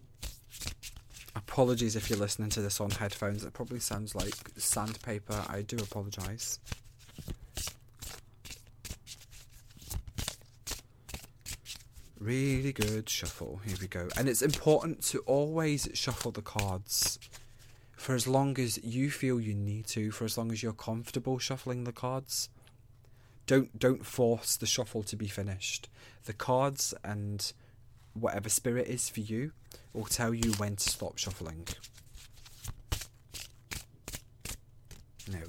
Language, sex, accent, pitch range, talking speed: English, male, British, 105-125 Hz, 120 wpm